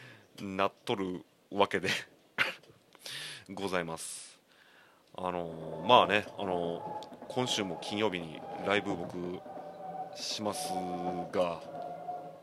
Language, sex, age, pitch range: Japanese, male, 30-49, 90-150 Hz